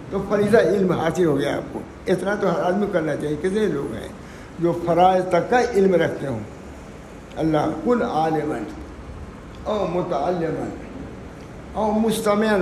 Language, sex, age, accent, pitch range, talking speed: English, male, 60-79, Indian, 150-195 Hz, 145 wpm